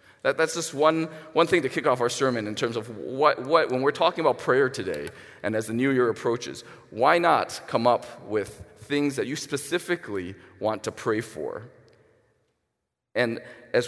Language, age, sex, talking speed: English, 40-59, male, 180 wpm